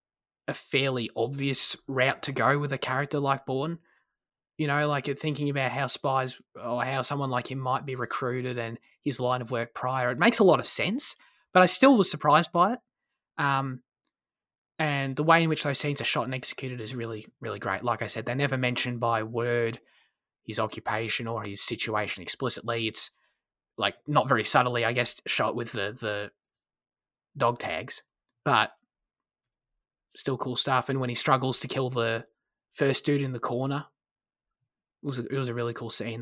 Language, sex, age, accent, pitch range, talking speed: English, male, 20-39, Australian, 115-140 Hz, 185 wpm